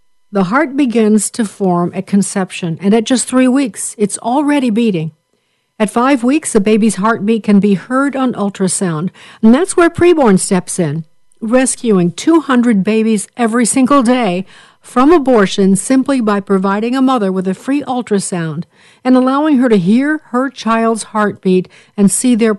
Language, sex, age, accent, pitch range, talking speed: English, female, 60-79, American, 190-250 Hz, 160 wpm